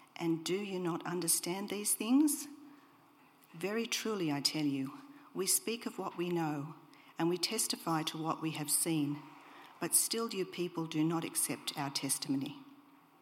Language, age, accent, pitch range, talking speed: English, 50-69, Australian, 150-185 Hz, 160 wpm